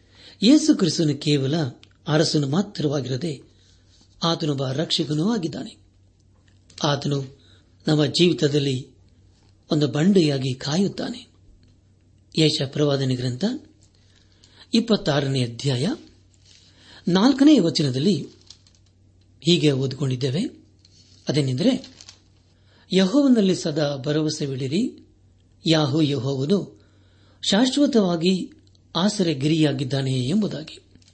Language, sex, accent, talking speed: Kannada, male, native, 60 wpm